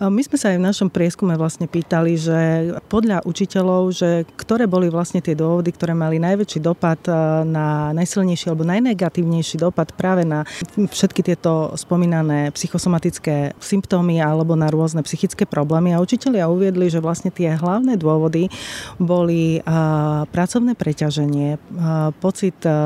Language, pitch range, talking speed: Slovak, 160-185 Hz, 135 wpm